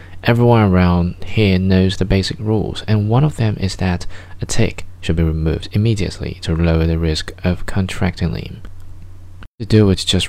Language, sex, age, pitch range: Chinese, male, 20-39, 90-100 Hz